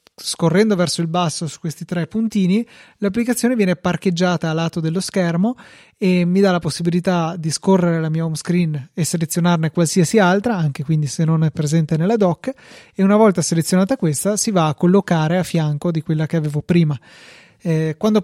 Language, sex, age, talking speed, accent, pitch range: Italian, male, 20-39, 185 wpm, native, 160-190 Hz